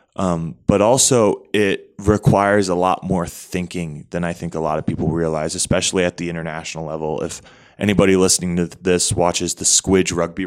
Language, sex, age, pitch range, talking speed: English, male, 20-39, 85-95 Hz, 180 wpm